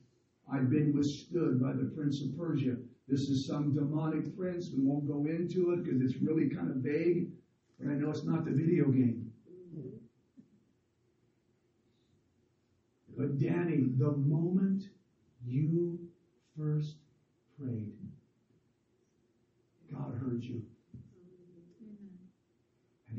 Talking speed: 110 wpm